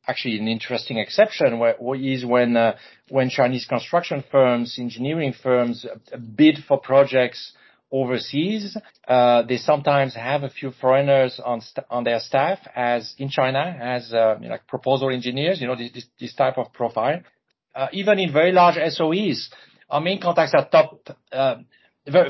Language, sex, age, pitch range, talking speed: English, male, 40-59, 125-150 Hz, 160 wpm